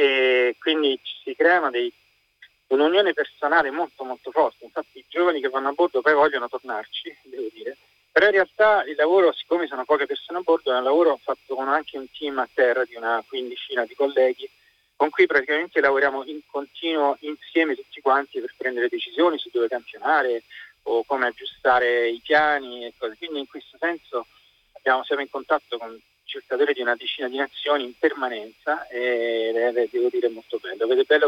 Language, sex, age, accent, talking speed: Italian, male, 30-49, native, 185 wpm